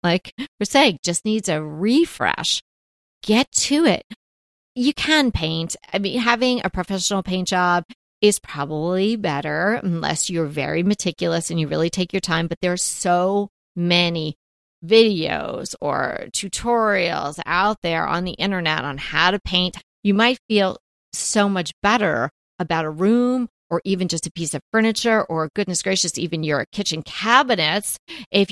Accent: American